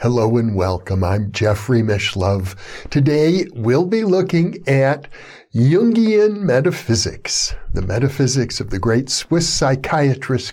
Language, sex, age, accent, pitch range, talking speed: English, male, 60-79, American, 115-175 Hz, 115 wpm